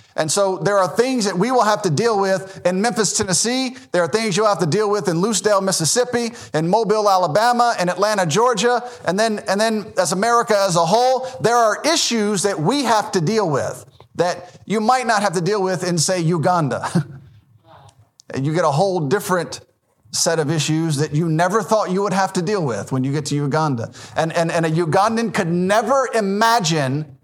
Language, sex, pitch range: English, male, 155-210 Hz